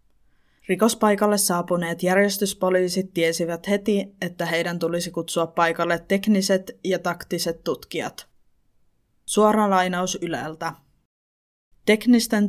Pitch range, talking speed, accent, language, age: 170-195 Hz, 85 wpm, native, Finnish, 20-39